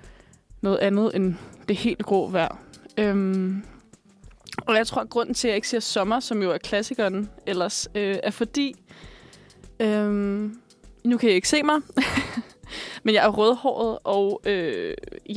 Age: 20-39